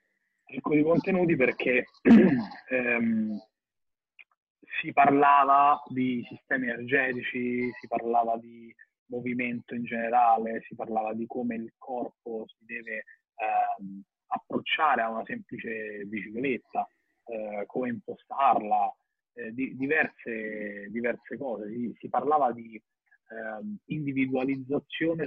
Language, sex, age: Italian, male, 30-49